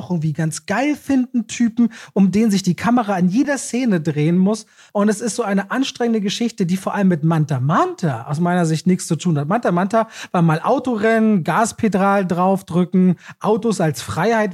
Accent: German